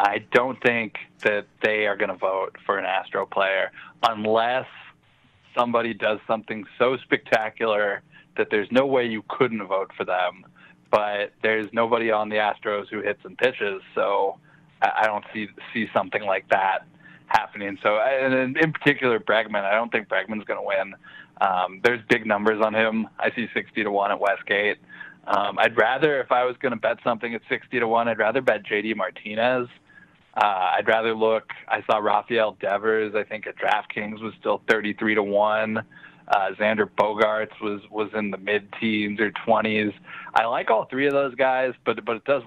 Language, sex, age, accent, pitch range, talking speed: English, male, 20-39, American, 105-115 Hz, 185 wpm